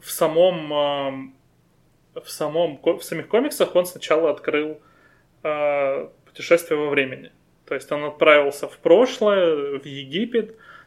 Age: 20-39